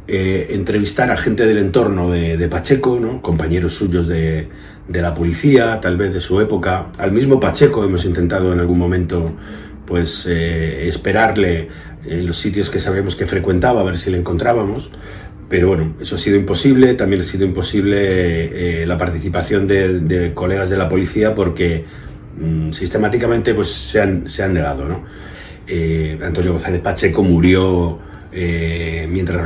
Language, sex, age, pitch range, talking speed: Spanish, male, 40-59, 85-100 Hz, 155 wpm